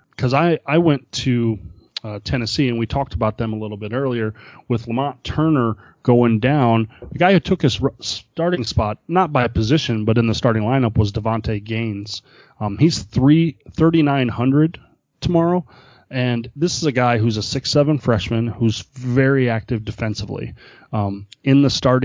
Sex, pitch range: male, 110-135 Hz